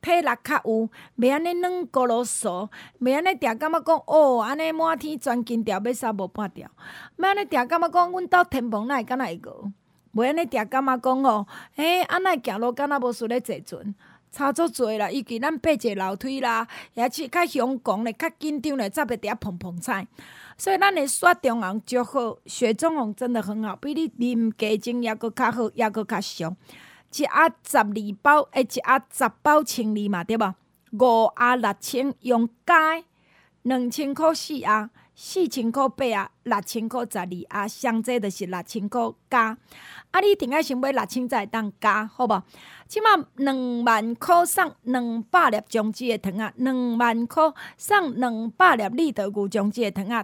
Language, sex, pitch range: Chinese, female, 220-295 Hz